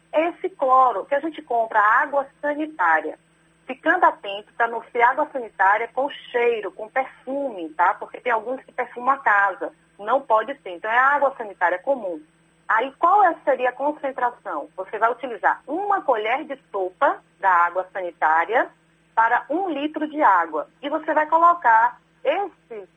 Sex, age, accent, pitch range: female, 30-49, Brazilian, 205-290 Hz